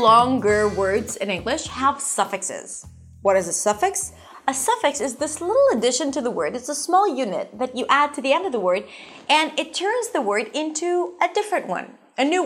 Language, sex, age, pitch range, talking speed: English, female, 20-39, 215-320 Hz, 205 wpm